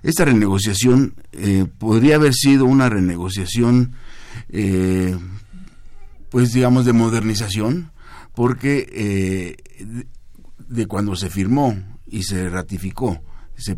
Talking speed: 100 wpm